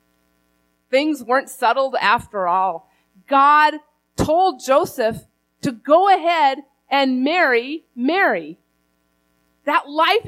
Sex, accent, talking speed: female, American, 95 wpm